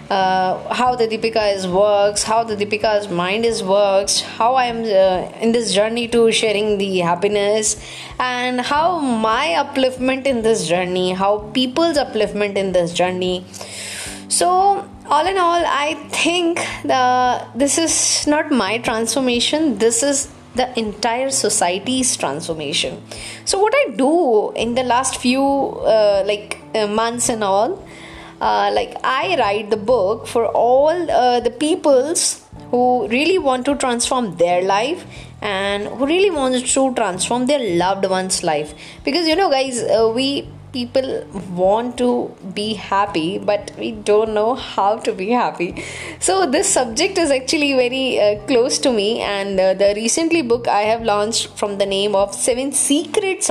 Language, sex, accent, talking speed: English, female, Indian, 155 wpm